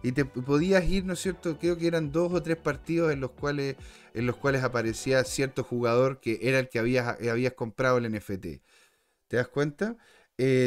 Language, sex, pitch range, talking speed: Spanish, male, 125-175 Hz, 200 wpm